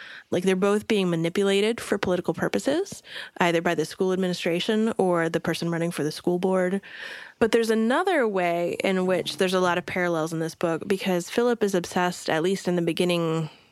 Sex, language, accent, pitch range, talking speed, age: female, English, American, 165-195 Hz, 190 wpm, 20-39